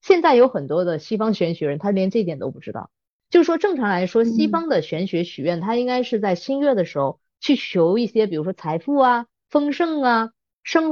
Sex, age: female, 20-39